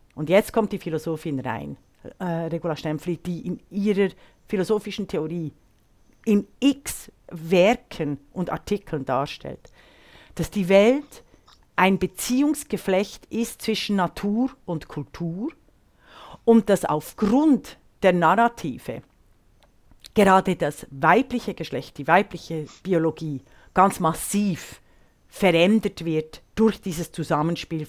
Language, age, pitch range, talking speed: German, 50-69, 150-200 Hz, 105 wpm